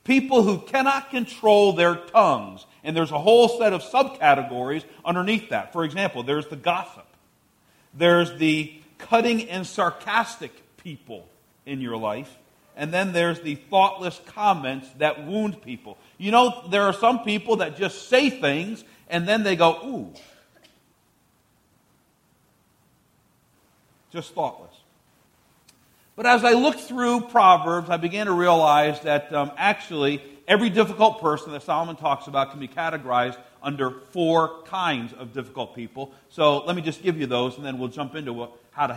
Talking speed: 150 wpm